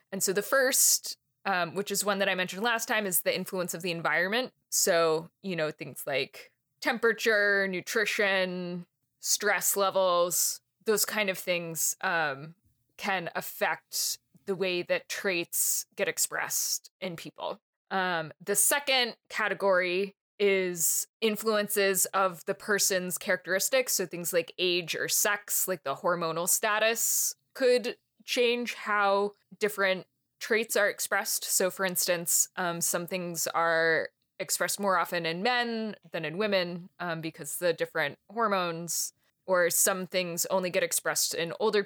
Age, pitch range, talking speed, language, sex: 20-39, 175-205 Hz, 140 wpm, English, female